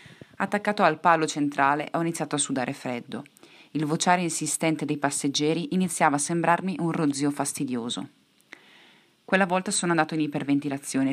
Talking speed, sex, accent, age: 140 wpm, female, native, 30-49